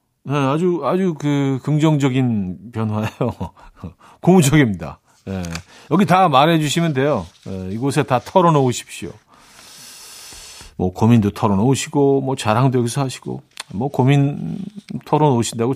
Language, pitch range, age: Korean, 115-155 Hz, 40-59